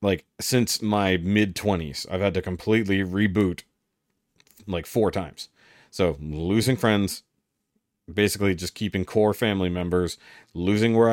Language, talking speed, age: English, 125 wpm, 40-59